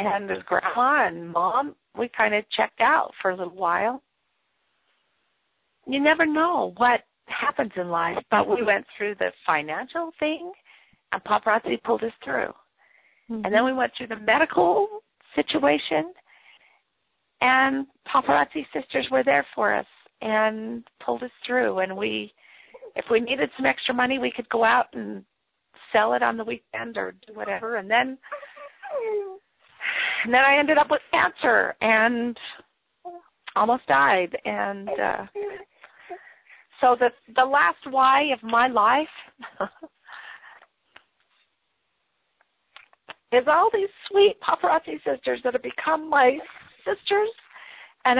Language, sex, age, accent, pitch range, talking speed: English, female, 40-59, American, 220-320 Hz, 135 wpm